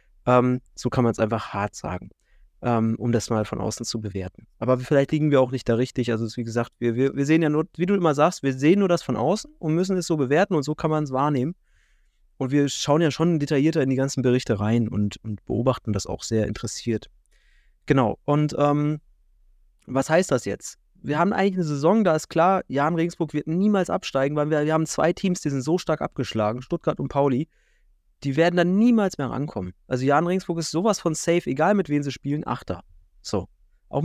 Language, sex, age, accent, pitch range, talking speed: German, male, 20-39, German, 120-160 Hz, 220 wpm